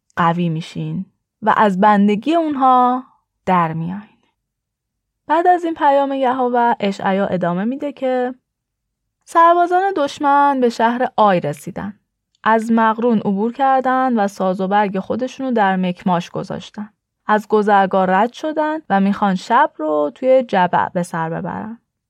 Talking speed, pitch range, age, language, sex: 130 wpm, 195-260 Hz, 10-29, Persian, female